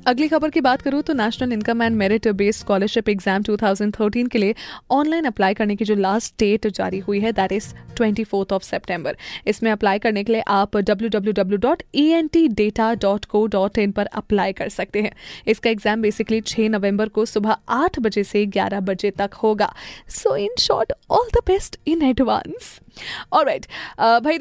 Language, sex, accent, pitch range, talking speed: Hindi, female, native, 200-235 Hz, 170 wpm